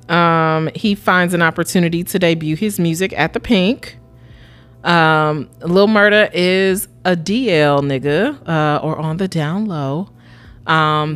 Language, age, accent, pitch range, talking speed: English, 30-49, American, 150-200 Hz, 140 wpm